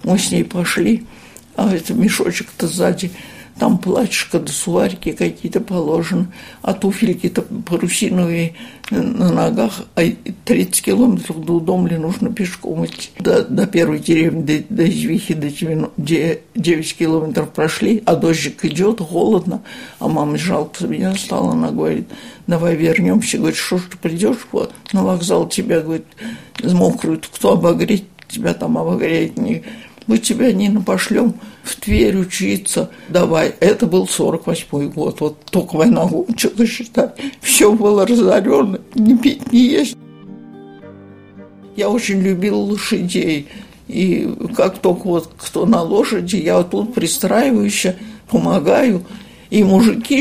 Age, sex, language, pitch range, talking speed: 60-79, male, Russian, 170-225 Hz, 135 wpm